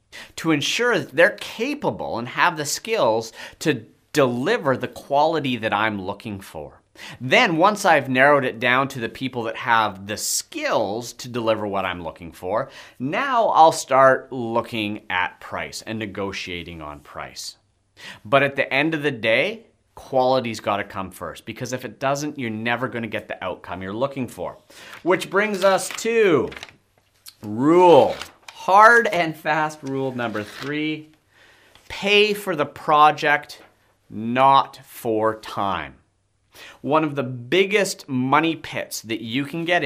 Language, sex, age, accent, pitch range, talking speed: English, male, 30-49, American, 110-150 Hz, 150 wpm